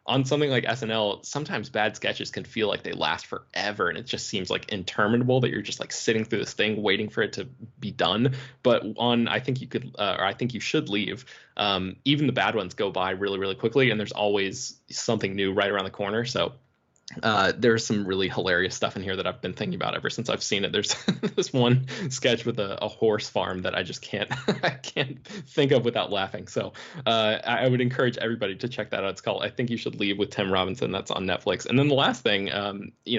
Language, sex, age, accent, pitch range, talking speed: English, male, 20-39, American, 100-125 Hz, 240 wpm